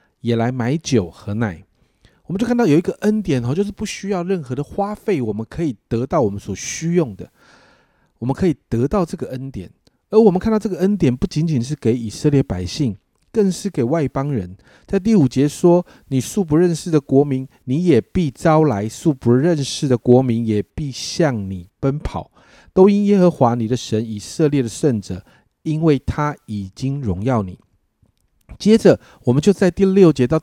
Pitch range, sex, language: 115-180 Hz, male, Chinese